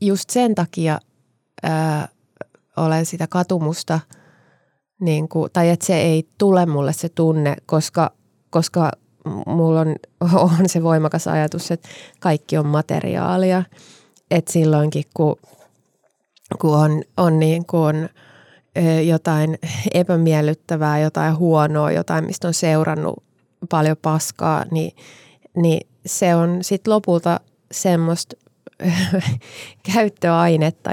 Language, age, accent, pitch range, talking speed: Finnish, 20-39, native, 155-180 Hz, 110 wpm